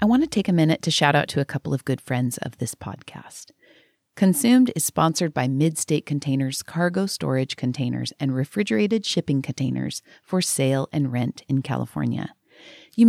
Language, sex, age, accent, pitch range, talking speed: English, female, 40-59, American, 140-190 Hz, 175 wpm